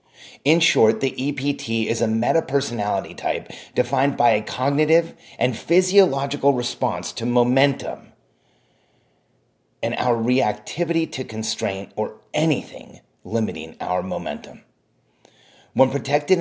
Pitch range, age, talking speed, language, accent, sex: 110-140 Hz, 30-49, 105 wpm, English, American, male